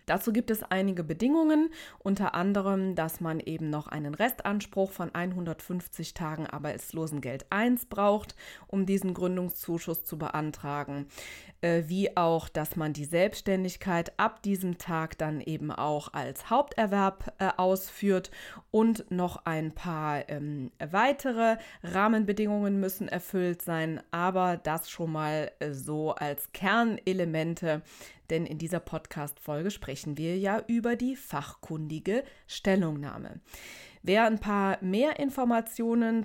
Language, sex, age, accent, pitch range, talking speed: German, female, 20-39, German, 165-210 Hz, 125 wpm